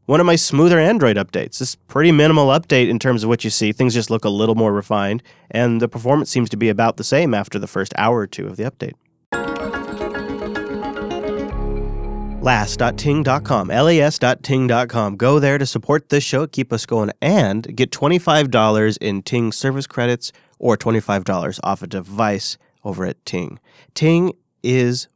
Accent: American